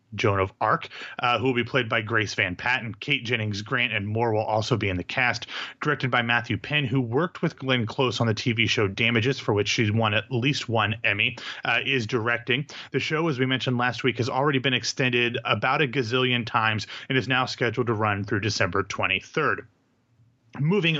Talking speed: 210 wpm